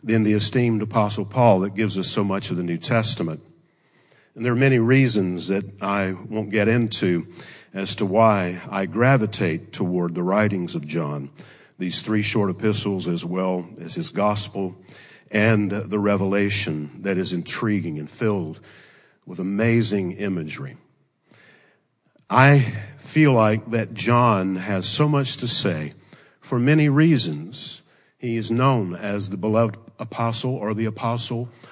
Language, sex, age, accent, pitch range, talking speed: English, male, 50-69, American, 95-120 Hz, 145 wpm